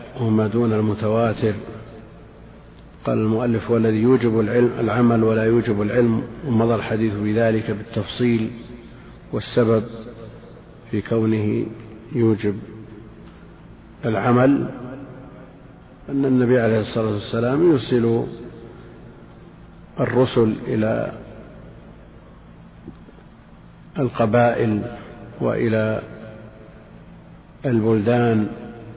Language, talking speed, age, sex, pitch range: Arabic, 70 wpm, 50-69, male, 110-125 Hz